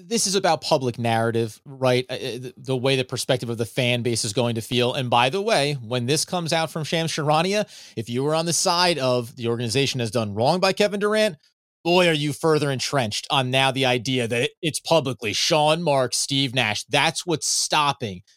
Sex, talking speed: male, 205 wpm